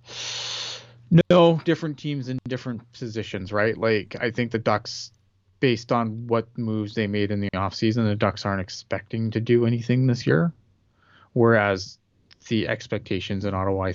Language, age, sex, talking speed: English, 20-39, male, 155 wpm